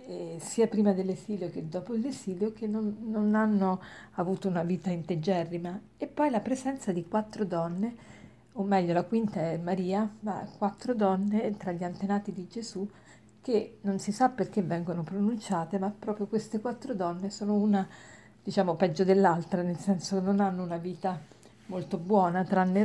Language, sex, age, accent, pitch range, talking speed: Italian, female, 50-69, native, 180-210 Hz, 165 wpm